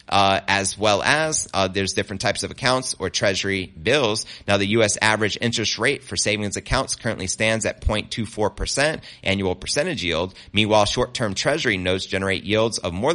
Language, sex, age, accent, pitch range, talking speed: English, male, 30-49, American, 100-130 Hz, 175 wpm